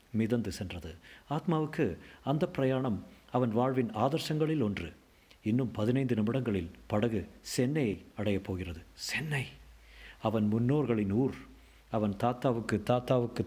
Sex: male